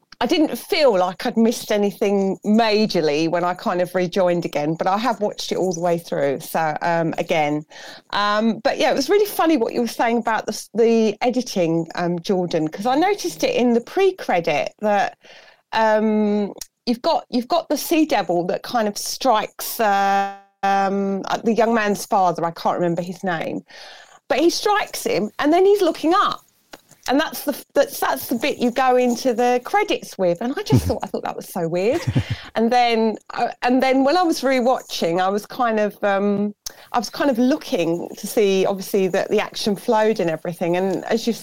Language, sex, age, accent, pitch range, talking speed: English, female, 30-49, British, 180-250 Hz, 195 wpm